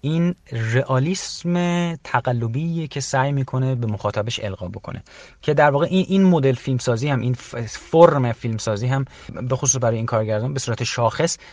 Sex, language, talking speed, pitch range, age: male, Persian, 155 wpm, 110-140 Hz, 30-49